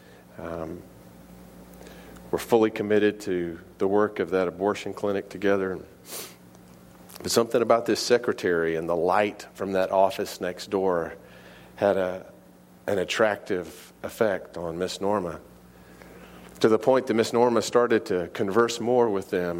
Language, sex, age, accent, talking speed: English, male, 40-59, American, 140 wpm